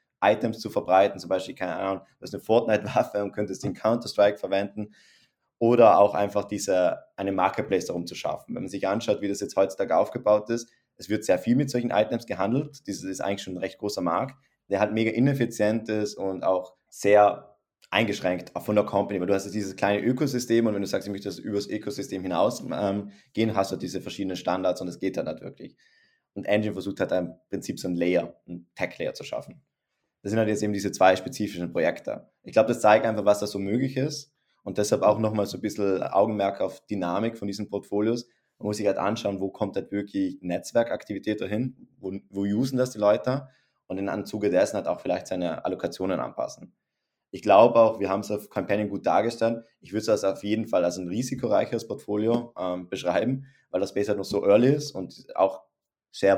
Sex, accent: male, German